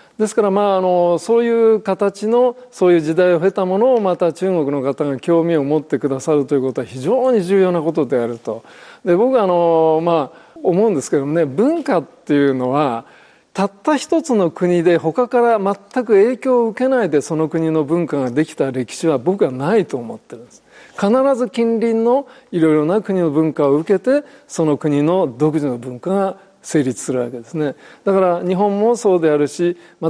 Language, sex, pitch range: Japanese, male, 145-210 Hz